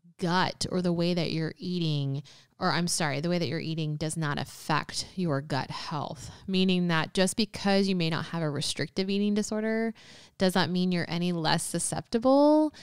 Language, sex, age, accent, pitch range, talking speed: English, female, 20-39, American, 165-210 Hz, 185 wpm